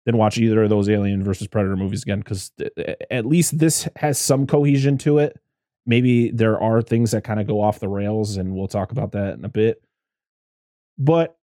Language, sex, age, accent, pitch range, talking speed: English, male, 20-39, American, 105-150 Hz, 210 wpm